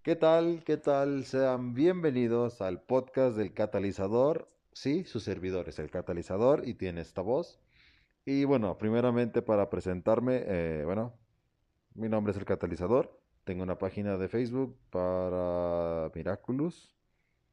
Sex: male